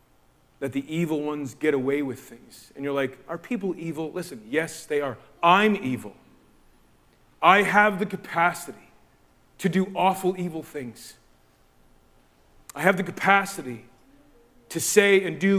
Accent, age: American, 40-59